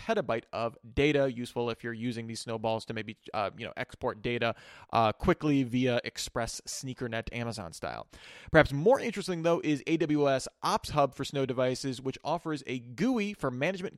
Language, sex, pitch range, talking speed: English, male, 120-165 Hz, 165 wpm